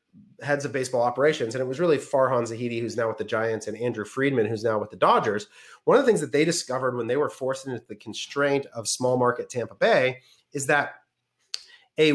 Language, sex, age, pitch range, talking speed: English, male, 30-49, 130-165 Hz, 220 wpm